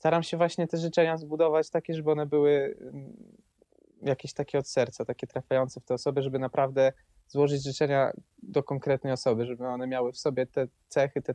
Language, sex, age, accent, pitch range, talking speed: Polish, male, 20-39, native, 130-155 Hz, 180 wpm